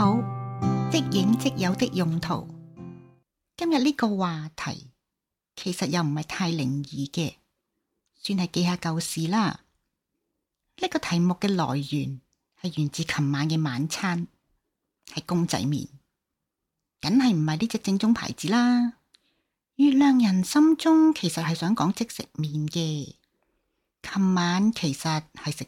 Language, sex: Chinese, female